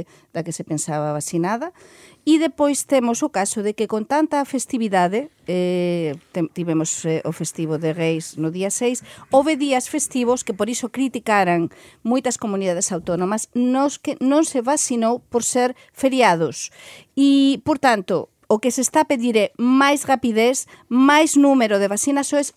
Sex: female